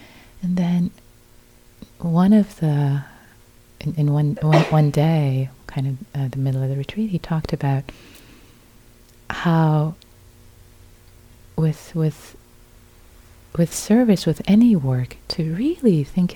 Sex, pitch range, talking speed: female, 145-195 Hz, 120 wpm